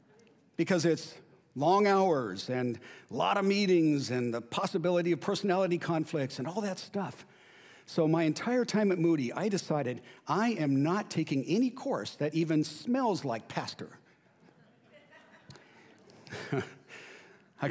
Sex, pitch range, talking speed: male, 145-185 Hz, 130 wpm